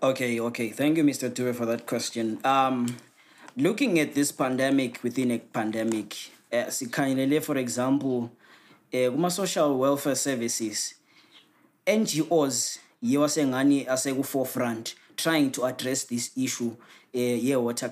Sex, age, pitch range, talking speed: male, 20-39, 120-145 Hz, 125 wpm